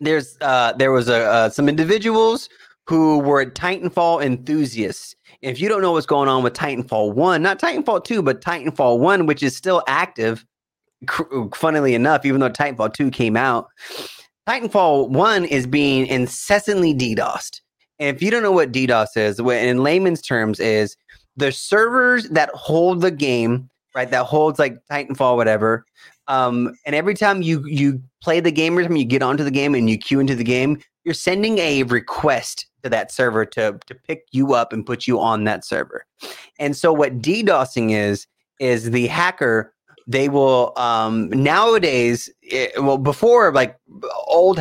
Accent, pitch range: American, 125-165 Hz